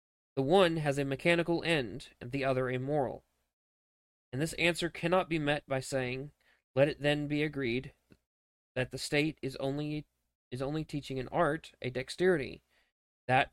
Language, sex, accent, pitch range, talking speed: English, male, American, 130-155 Hz, 165 wpm